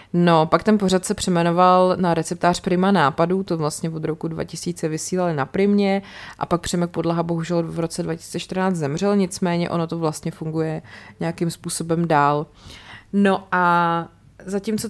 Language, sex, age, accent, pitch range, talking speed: Czech, female, 30-49, native, 160-190 Hz, 155 wpm